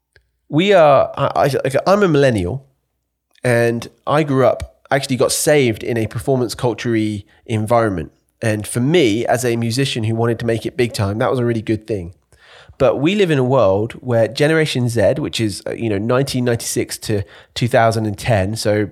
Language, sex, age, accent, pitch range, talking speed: English, male, 20-39, British, 110-145 Hz, 165 wpm